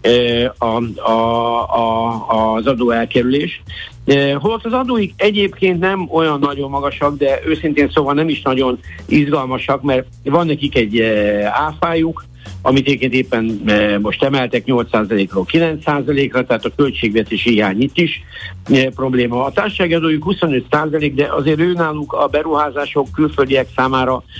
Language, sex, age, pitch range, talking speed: Hungarian, male, 60-79, 120-145 Hz, 125 wpm